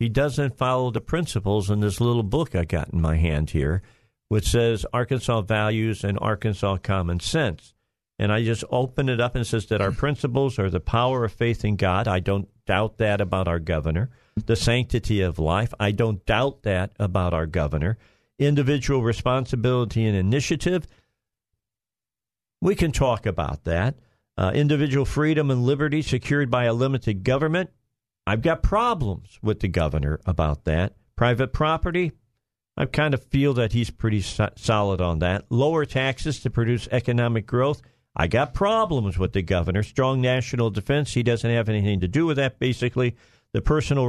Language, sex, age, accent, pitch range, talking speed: English, male, 50-69, American, 100-130 Hz, 170 wpm